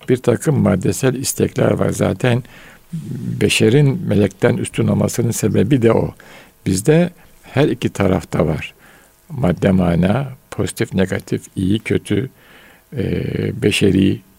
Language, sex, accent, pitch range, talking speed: Turkish, male, native, 100-135 Hz, 105 wpm